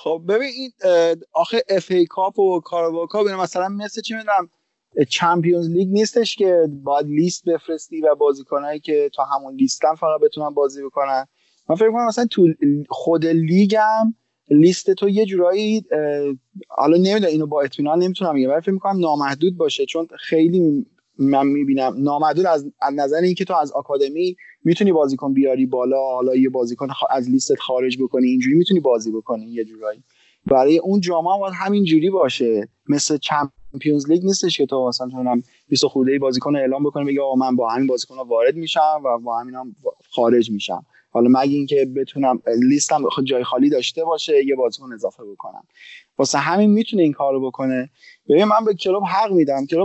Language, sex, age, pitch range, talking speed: Persian, male, 30-49, 135-195 Hz, 170 wpm